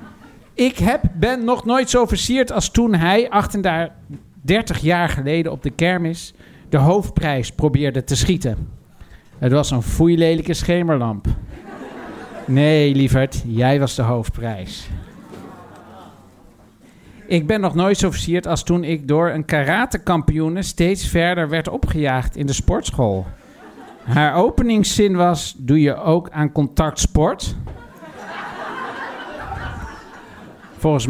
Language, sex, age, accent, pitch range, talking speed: Dutch, male, 50-69, Dutch, 145-195 Hz, 115 wpm